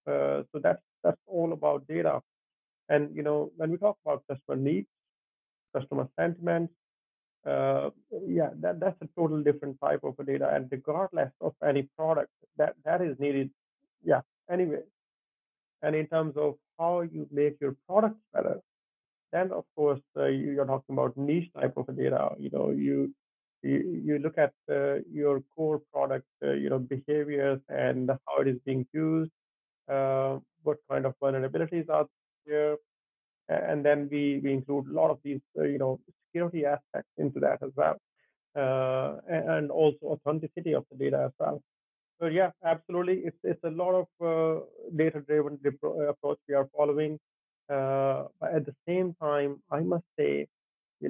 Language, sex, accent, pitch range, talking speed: English, male, Indian, 135-165 Hz, 165 wpm